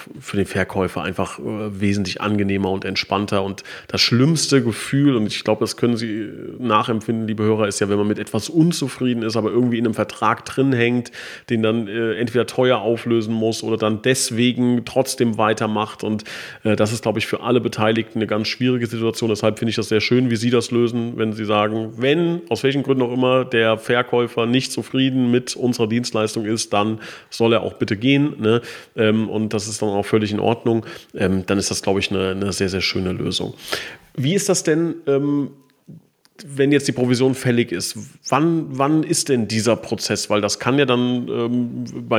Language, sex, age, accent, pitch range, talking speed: German, male, 30-49, German, 110-130 Hz, 195 wpm